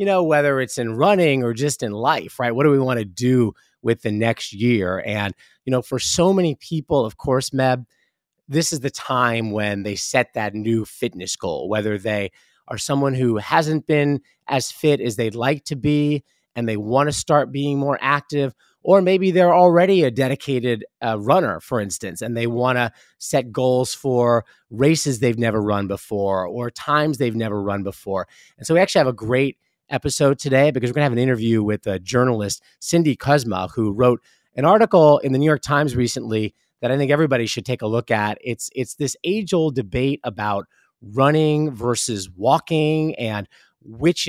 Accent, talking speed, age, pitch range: American, 195 wpm, 30-49, 115-145 Hz